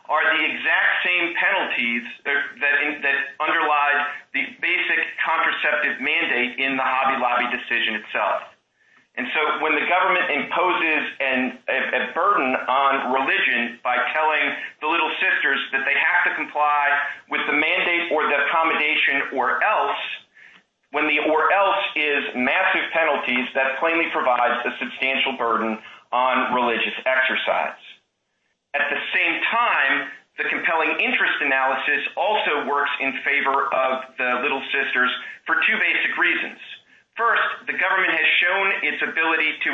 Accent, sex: American, male